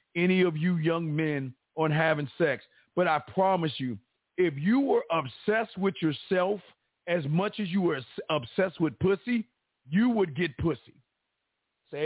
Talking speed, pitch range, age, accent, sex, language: 155 wpm, 170-245 Hz, 50-69, American, male, English